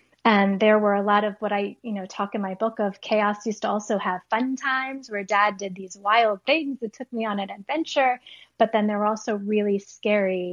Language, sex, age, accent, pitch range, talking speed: English, female, 20-39, American, 200-235 Hz, 235 wpm